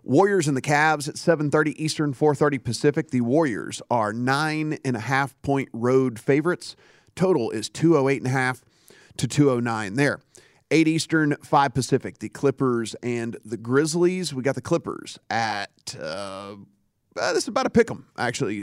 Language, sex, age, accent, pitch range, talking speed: English, male, 40-59, American, 120-150 Hz, 165 wpm